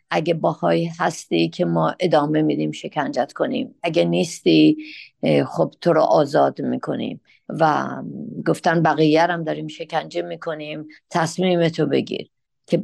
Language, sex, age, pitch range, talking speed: Persian, female, 50-69, 150-180 Hz, 120 wpm